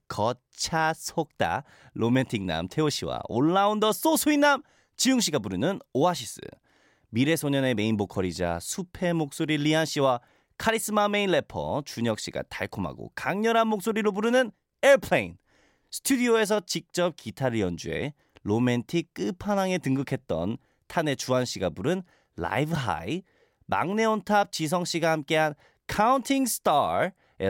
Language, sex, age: Korean, male, 40-59